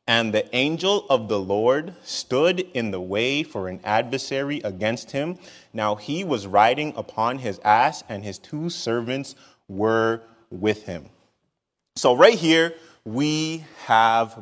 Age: 30-49